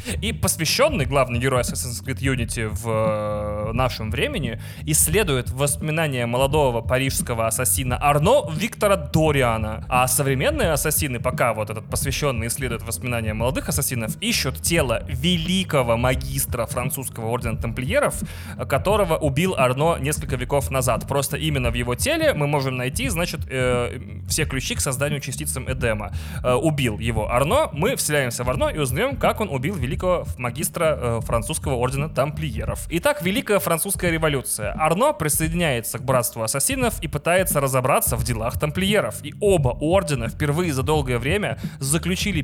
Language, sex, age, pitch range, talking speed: Russian, male, 20-39, 115-150 Hz, 140 wpm